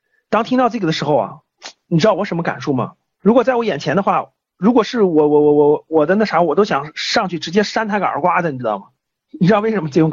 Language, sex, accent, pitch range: Chinese, male, native, 185-290 Hz